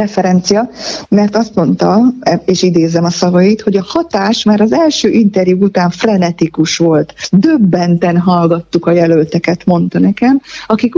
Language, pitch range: Hungarian, 180-225 Hz